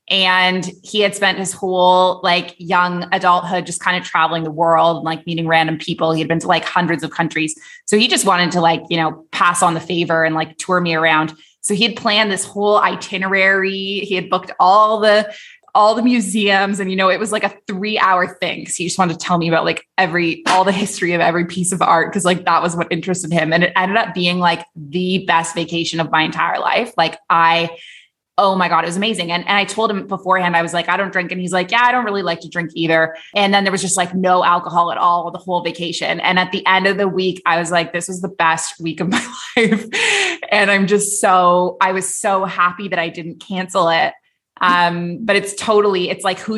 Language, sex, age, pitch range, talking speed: English, female, 20-39, 170-195 Hz, 245 wpm